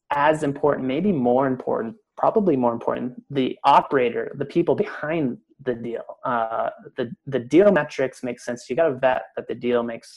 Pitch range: 120-140 Hz